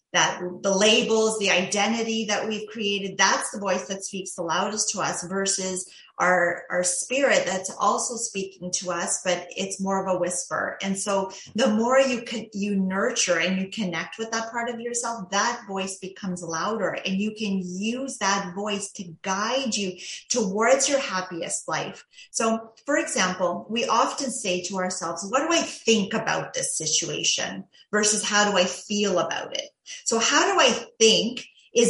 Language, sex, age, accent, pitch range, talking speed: English, female, 30-49, American, 190-245 Hz, 175 wpm